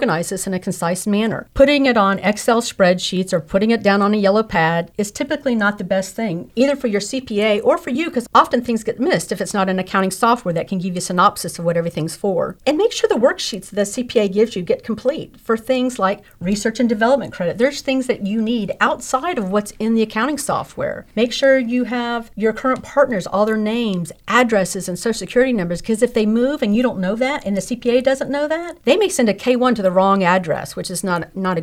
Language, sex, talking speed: English, female, 240 wpm